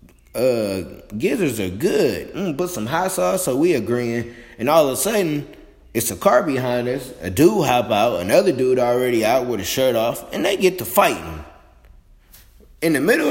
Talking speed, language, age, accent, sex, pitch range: 190 wpm, English, 20-39, American, male, 90-120 Hz